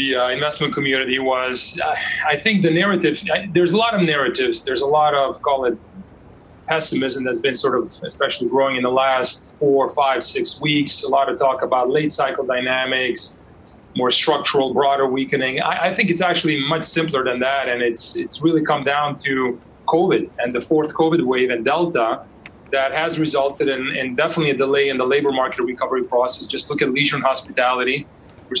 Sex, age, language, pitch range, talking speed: male, 30-49, English, 135-165 Hz, 195 wpm